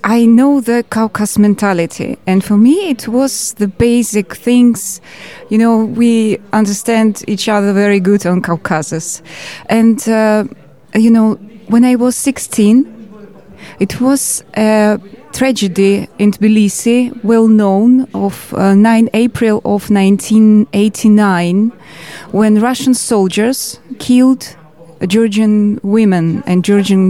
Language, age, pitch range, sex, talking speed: English, 20-39, 190-230 Hz, female, 115 wpm